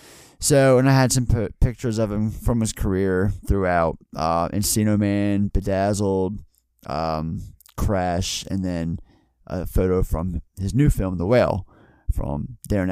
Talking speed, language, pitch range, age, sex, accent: 140 wpm, English, 95-125 Hz, 20-39, male, American